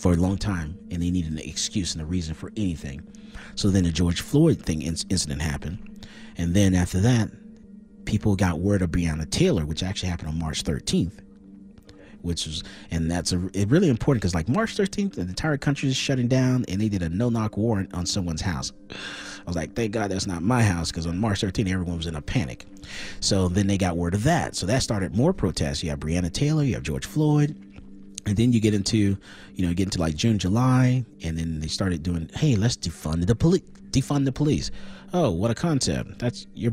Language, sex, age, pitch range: English, male, 30-49, 90-120 Hz